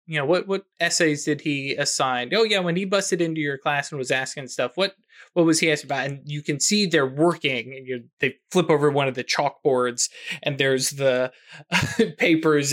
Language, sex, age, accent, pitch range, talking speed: English, male, 20-39, American, 135-185 Hz, 210 wpm